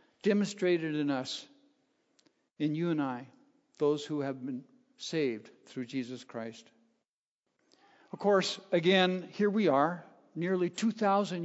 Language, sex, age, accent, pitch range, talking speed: English, male, 60-79, American, 150-210 Hz, 120 wpm